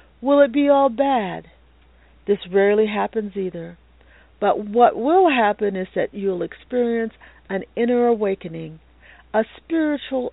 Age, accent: 50-69, American